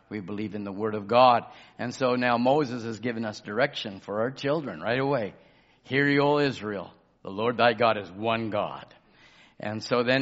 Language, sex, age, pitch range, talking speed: English, male, 50-69, 110-135 Hz, 200 wpm